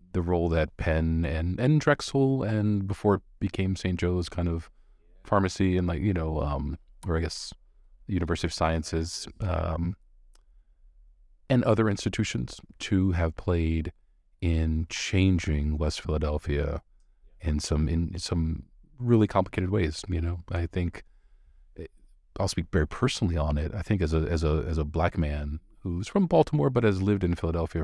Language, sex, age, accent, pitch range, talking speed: English, male, 40-59, American, 75-95 Hz, 160 wpm